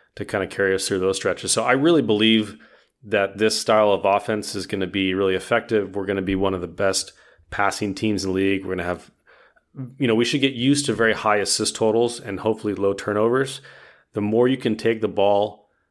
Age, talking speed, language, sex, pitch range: 30-49, 235 wpm, English, male, 100-115 Hz